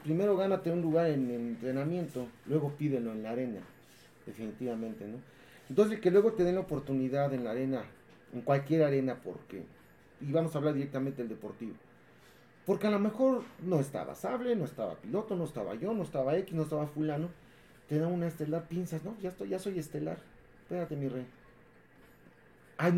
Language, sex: English, male